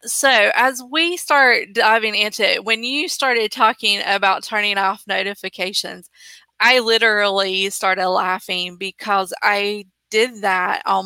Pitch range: 190-235 Hz